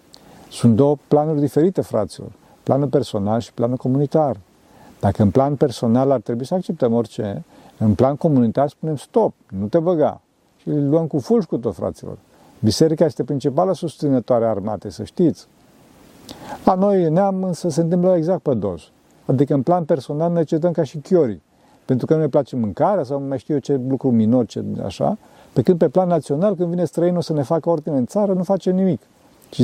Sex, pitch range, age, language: male, 120-160 Hz, 50-69, Romanian